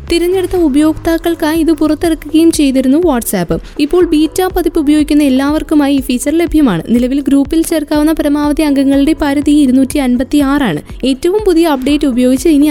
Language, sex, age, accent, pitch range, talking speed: Malayalam, female, 20-39, native, 260-315 Hz, 130 wpm